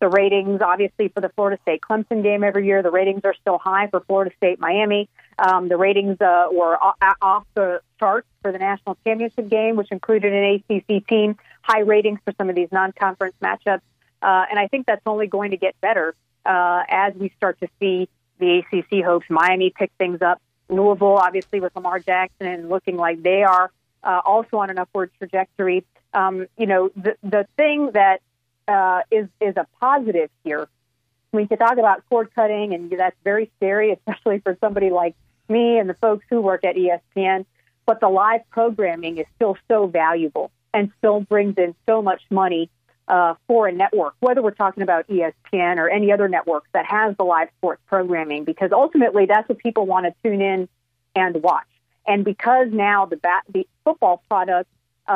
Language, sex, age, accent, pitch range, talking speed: English, female, 40-59, American, 180-210 Hz, 185 wpm